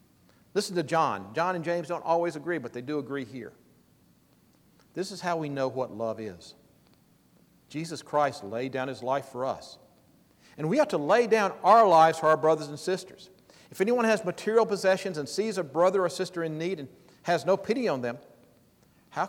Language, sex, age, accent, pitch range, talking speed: English, male, 50-69, American, 140-195 Hz, 195 wpm